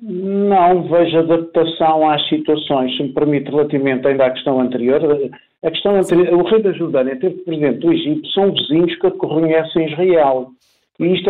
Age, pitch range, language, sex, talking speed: 50-69, 150-190 Hz, Portuguese, male, 170 wpm